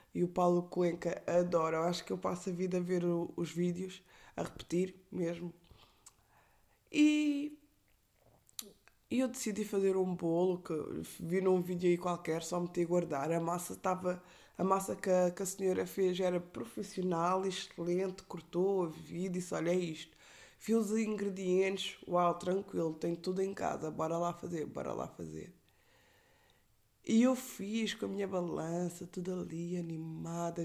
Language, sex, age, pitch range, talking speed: Portuguese, female, 20-39, 175-210 Hz, 165 wpm